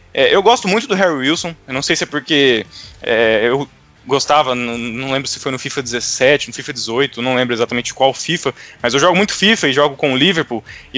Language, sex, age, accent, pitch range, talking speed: Portuguese, male, 20-39, Brazilian, 140-190 Hz, 220 wpm